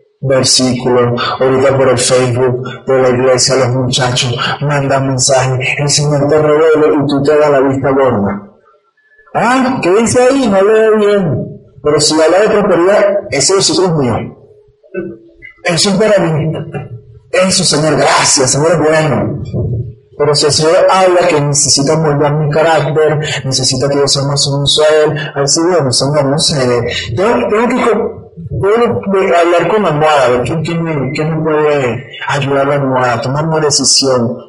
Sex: male